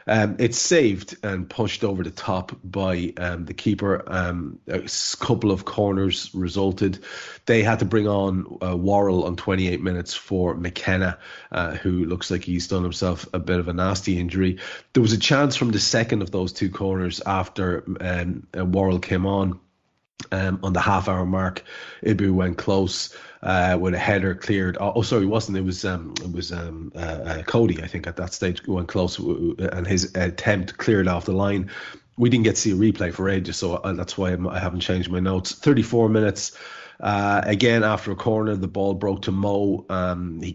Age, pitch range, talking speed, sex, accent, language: 30-49, 90-100 Hz, 195 wpm, male, Irish, English